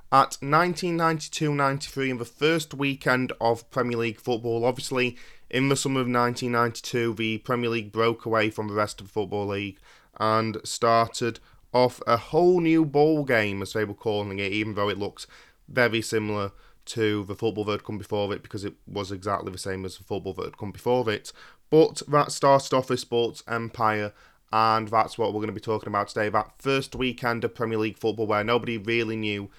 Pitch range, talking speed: 105-125 Hz, 195 wpm